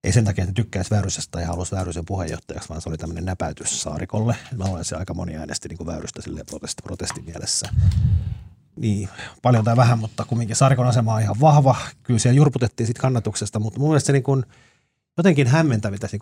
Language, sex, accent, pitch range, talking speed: Finnish, male, native, 95-125 Hz, 190 wpm